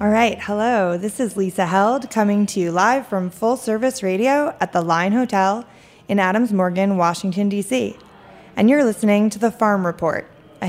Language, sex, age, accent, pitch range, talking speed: English, female, 20-39, American, 180-220 Hz, 180 wpm